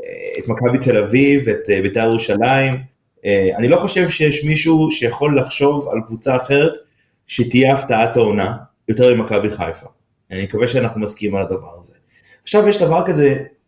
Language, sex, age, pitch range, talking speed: Hebrew, male, 30-49, 100-140 Hz, 150 wpm